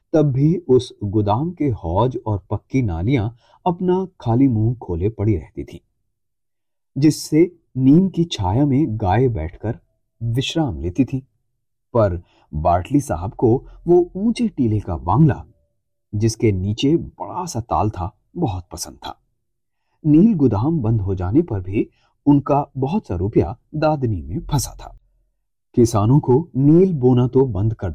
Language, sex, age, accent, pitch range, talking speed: Hindi, male, 30-49, native, 105-140 Hz, 140 wpm